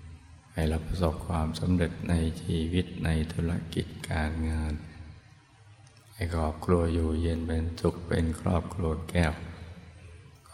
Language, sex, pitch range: Thai, male, 80-90 Hz